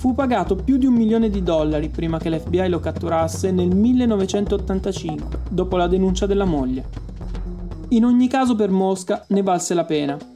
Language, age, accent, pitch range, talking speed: Italian, 30-49, native, 180-215 Hz, 170 wpm